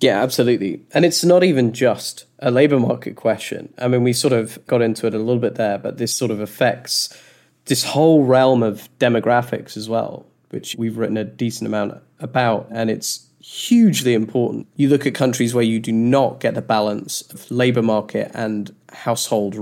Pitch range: 105-125 Hz